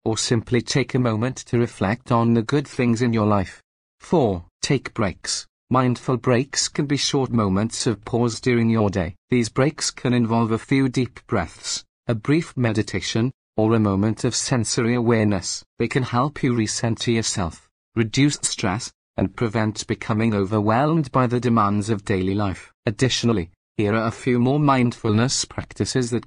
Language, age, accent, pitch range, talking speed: English, 40-59, British, 110-130 Hz, 165 wpm